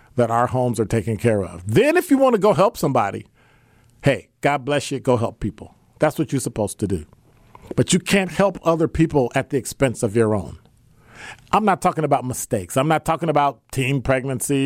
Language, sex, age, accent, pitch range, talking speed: English, male, 50-69, American, 120-165 Hz, 210 wpm